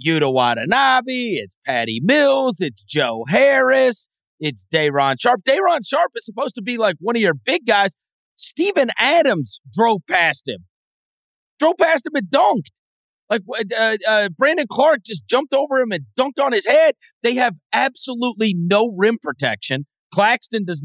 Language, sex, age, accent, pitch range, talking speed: English, male, 30-49, American, 135-225 Hz, 160 wpm